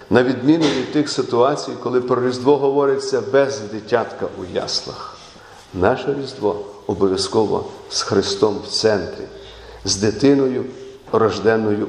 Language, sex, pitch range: Ukrainian, male, 105-145 Hz